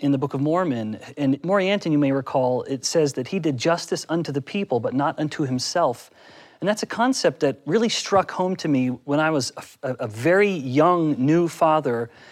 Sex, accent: male, American